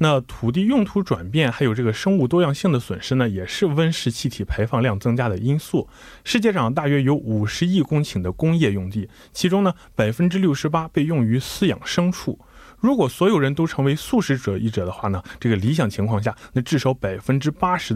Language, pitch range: Korean, 110-150 Hz